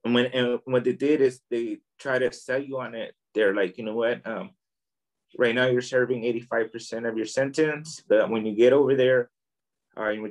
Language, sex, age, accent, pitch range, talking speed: English, male, 20-39, American, 115-135 Hz, 220 wpm